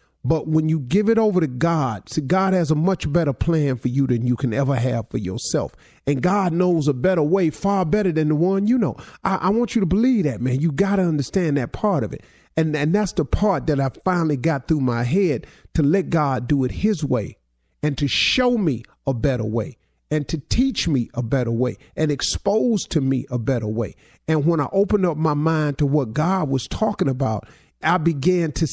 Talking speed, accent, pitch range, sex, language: 230 wpm, American, 130-185 Hz, male, English